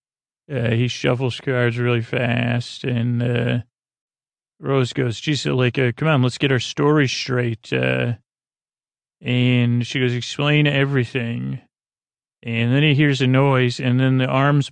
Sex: male